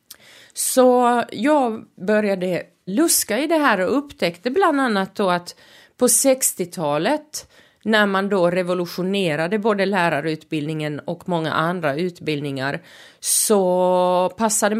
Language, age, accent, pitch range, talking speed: Swedish, 30-49, native, 160-230 Hz, 110 wpm